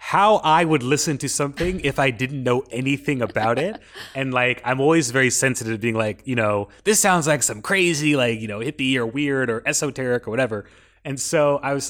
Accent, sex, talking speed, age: American, male, 215 wpm, 30-49